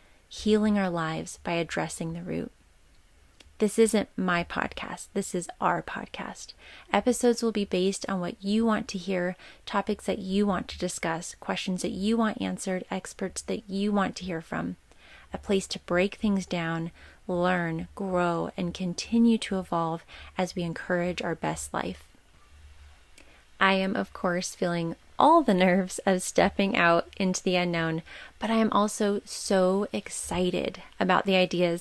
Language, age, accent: English, 30-49, American